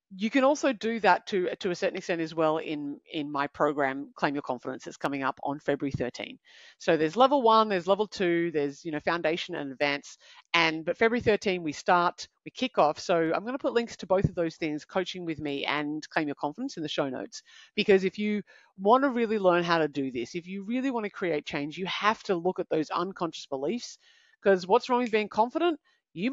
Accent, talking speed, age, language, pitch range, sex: Australian, 230 wpm, 40-59, English, 150-205 Hz, female